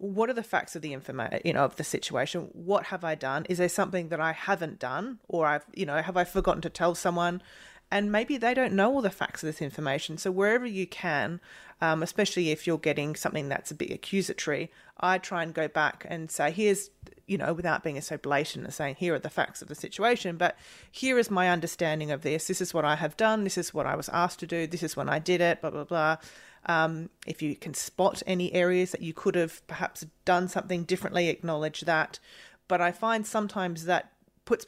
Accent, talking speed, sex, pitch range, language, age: Australian, 230 wpm, female, 160-195 Hz, English, 30-49